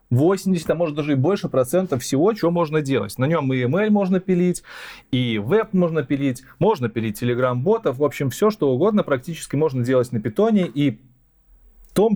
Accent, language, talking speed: native, Russian, 185 wpm